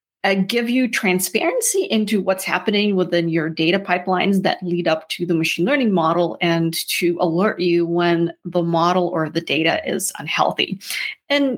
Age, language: 30-49, English